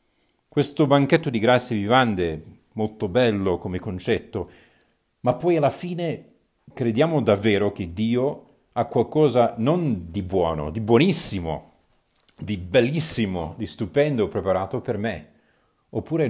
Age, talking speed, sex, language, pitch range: 40-59, 120 wpm, male, Italian, 90-125 Hz